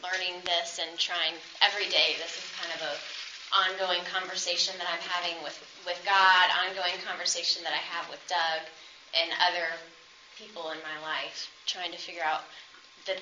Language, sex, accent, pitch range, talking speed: English, female, American, 170-190 Hz, 170 wpm